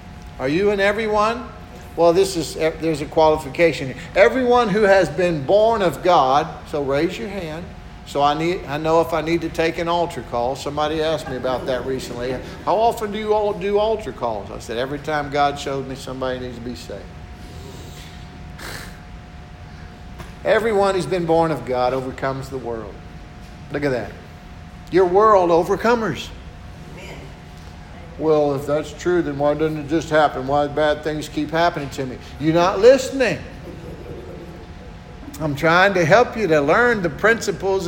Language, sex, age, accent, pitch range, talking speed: English, male, 50-69, American, 120-185 Hz, 170 wpm